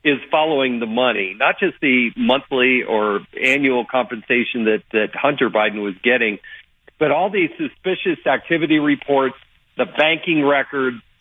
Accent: American